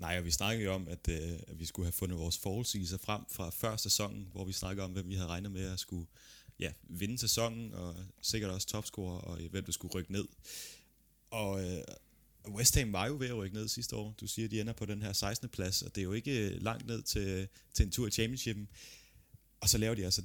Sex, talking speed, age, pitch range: male, 245 wpm, 20-39, 95-110 Hz